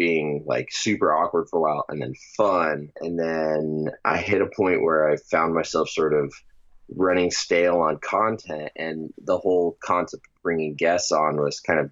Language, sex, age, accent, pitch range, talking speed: English, male, 20-39, American, 75-85 Hz, 185 wpm